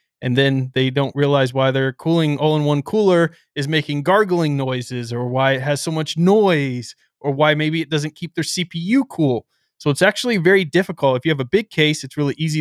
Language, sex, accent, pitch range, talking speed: English, male, American, 130-165 Hz, 210 wpm